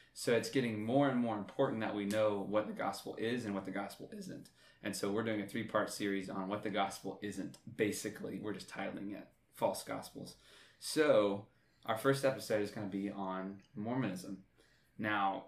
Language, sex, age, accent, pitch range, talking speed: English, male, 20-39, American, 95-115 Hz, 190 wpm